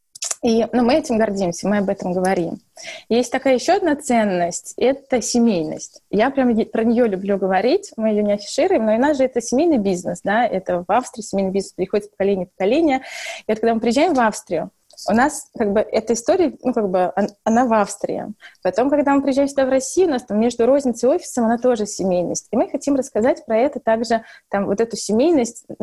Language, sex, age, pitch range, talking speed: Russian, female, 20-39, 210-270 Hz, 210 wpm